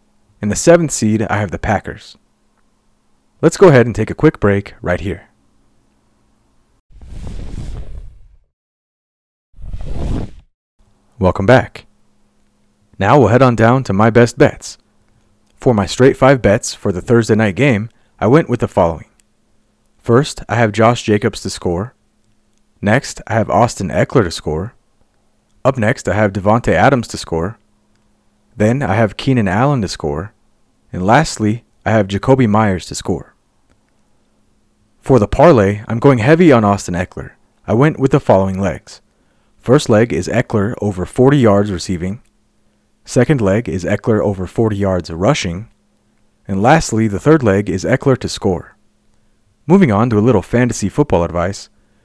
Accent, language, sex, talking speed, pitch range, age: American, English, male, 150 wpm, 100-120 Hz, 30-49